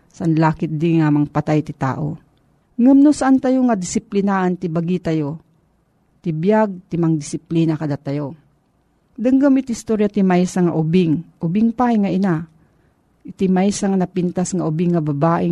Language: Filipino